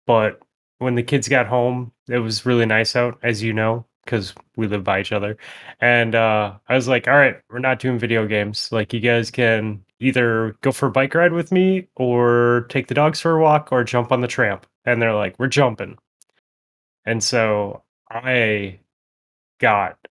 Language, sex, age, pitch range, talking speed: English, male, 20-39, 110-140 Hz, 195 wpm